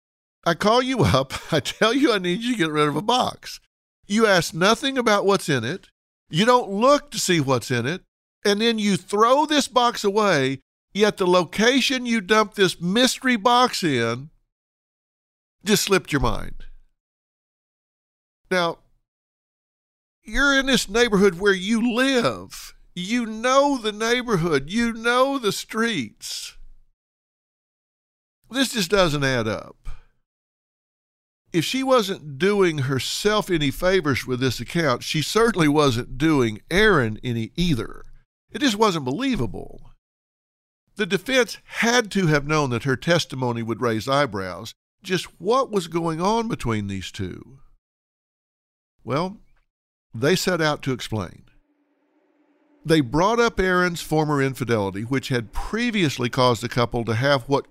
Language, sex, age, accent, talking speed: English, male, 50-69, American, 140 wpm